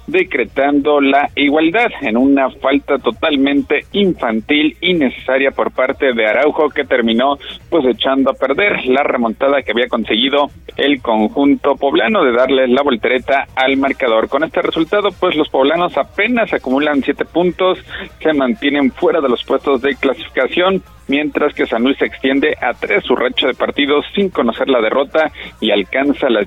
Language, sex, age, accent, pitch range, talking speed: Spanish, male, 50-69, Mexican, 130-150 Hz, 160 wpm